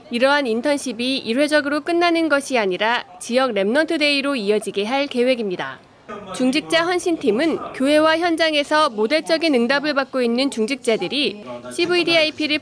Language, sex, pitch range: Korean, female, 230-310 Hz